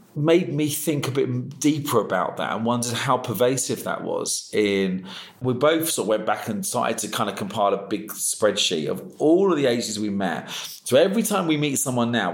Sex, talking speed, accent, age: male, 215 wpm, British, 40-59